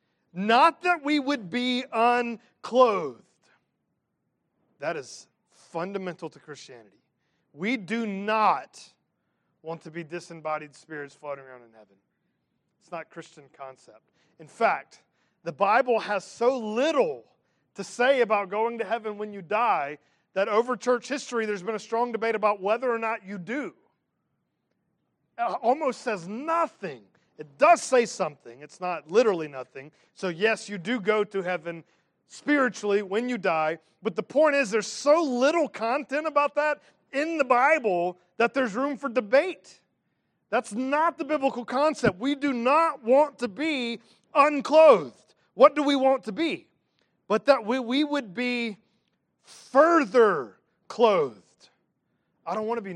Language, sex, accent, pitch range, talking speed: English, male, American, 190-275 Hz, 145 wpm